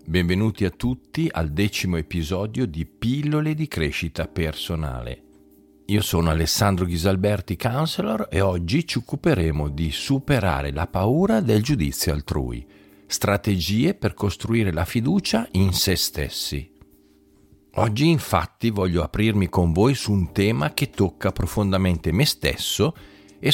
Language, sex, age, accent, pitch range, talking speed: Italian, male, 50-69, native, 80-105 Hz, 125 wpm